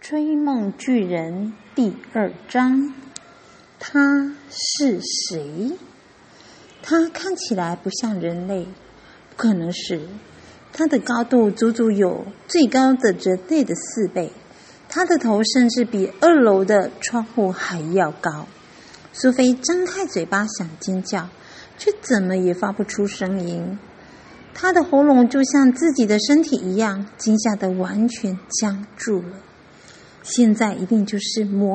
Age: 50-69